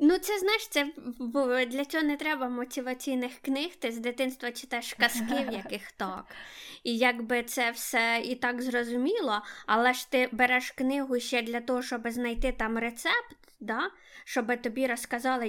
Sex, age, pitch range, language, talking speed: female, 20-39, 230-265 Hz, Ukrainian, 160 wpm